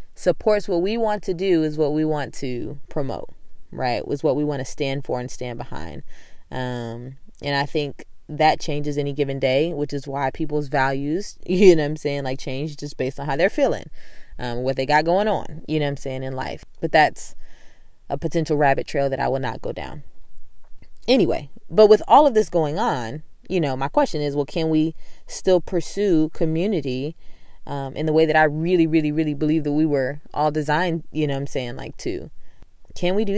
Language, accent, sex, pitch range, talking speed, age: English, American, female, 130-175 Hz, 215 wpm, 20-39